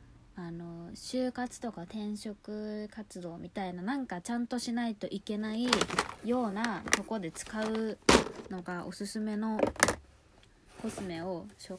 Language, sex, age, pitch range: Japanese, female, 20-39, 185-240 Hz